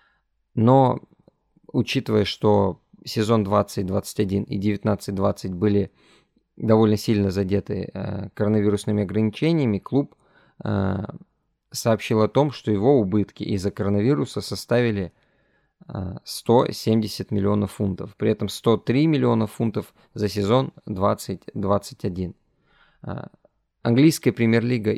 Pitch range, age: 100-120 Hz, 20-39